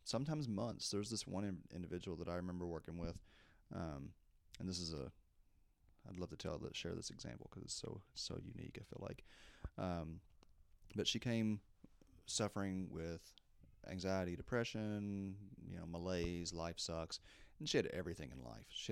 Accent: American